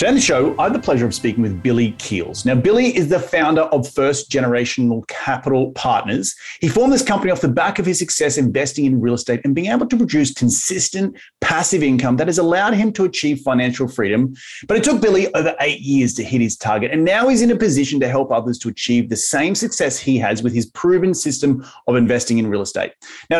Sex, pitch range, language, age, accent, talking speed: male, 120-165 Hz, English, 30-49, Australian, 230 wpm